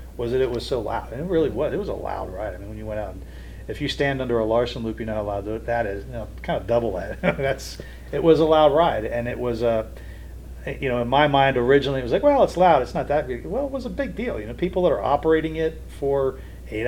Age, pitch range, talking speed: 40-59, 105-135 Hz, 305 wpm